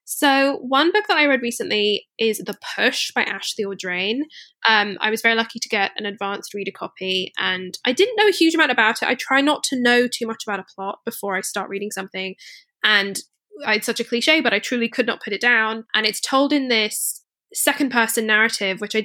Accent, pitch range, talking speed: British, 195-245 Hz, 225 wpm